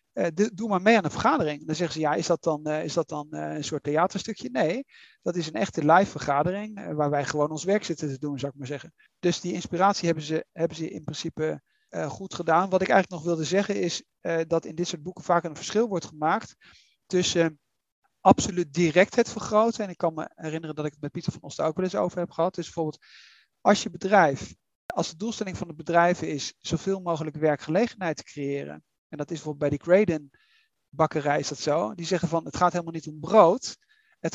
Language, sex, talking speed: Dutch, male, 220 wpm